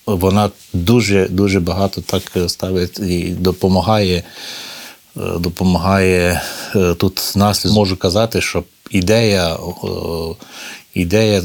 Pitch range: 90-100 Hz